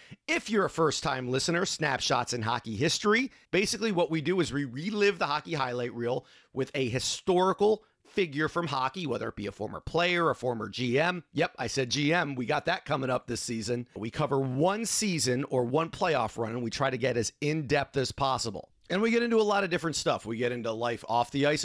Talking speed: 220 wpm